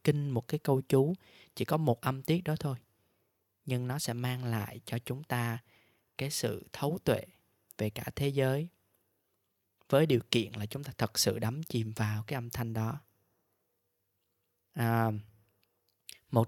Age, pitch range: 20-39, 105-130 Hz